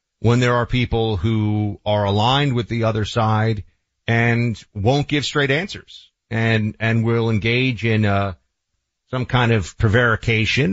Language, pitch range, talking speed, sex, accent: English, 95-135 Hz, 145 wpm, male, American